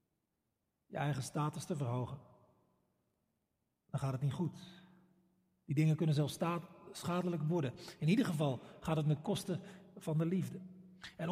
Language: Dutch